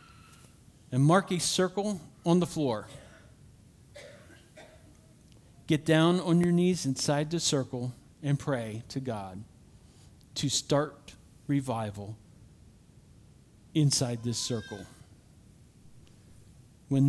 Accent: American